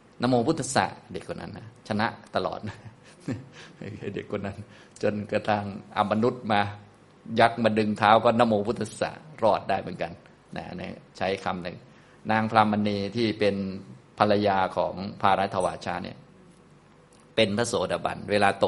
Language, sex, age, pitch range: Thai, male, 20-39, 95-110 Hz